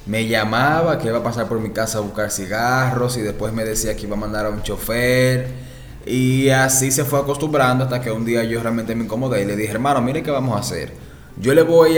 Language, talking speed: Spanish, 240 wpm